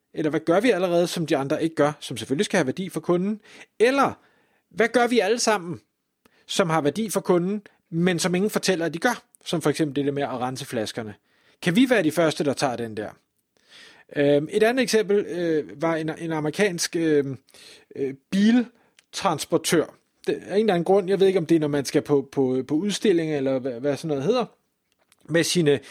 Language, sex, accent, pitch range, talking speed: Danish, male, native, 150-200 Hz, 195 wpm